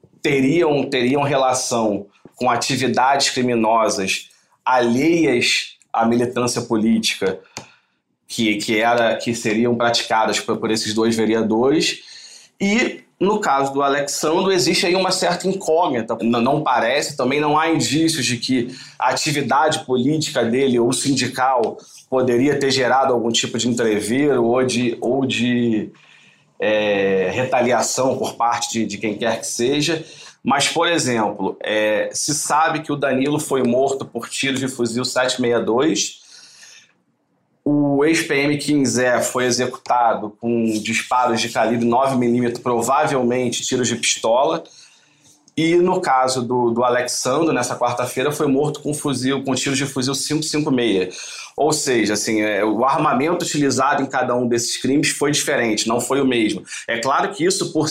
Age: 40-59